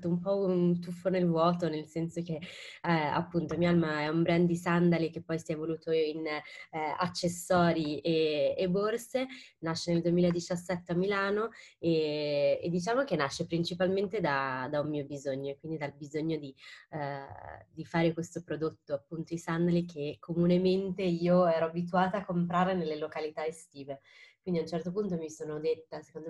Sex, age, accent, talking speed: female, 20-39, native, 170 wpm